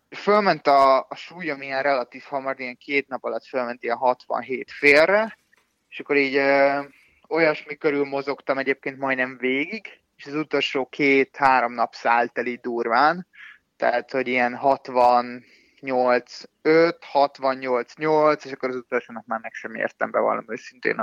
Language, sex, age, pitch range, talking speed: Hungarian, male, 20-39, 125-150 Hz, 145 wpm